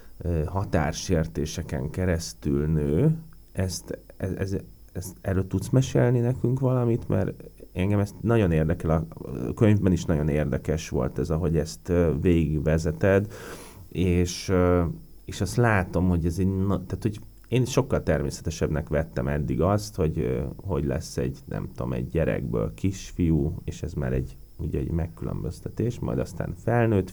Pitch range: 80-100 Hz